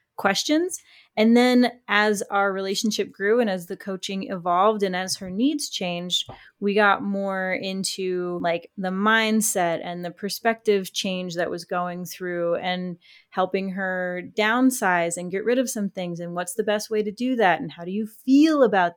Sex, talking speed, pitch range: female, 175 wpm, 185-220 Hz